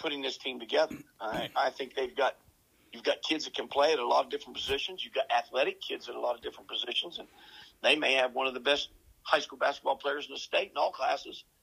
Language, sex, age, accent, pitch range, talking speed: English, male, 50-69, American, 145-180 Hz, 255 wpm